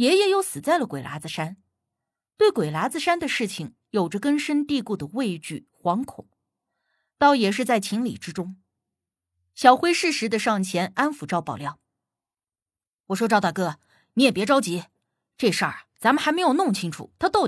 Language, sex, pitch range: Chinese, female, 170-270 Hz